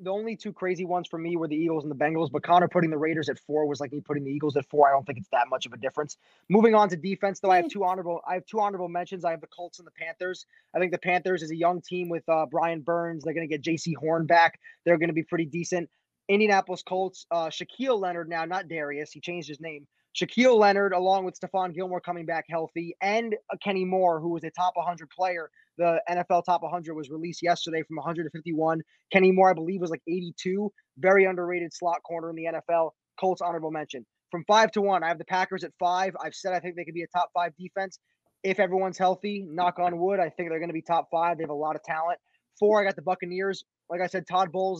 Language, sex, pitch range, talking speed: English, male, 165-185 Hz, 255 wpm